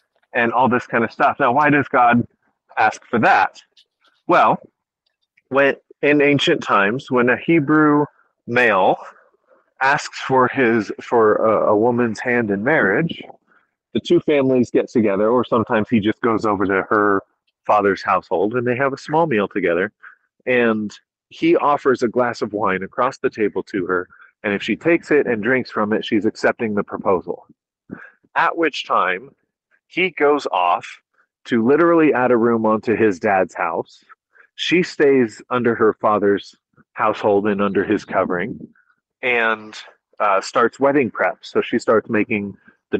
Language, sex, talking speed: English, male, 160 wpm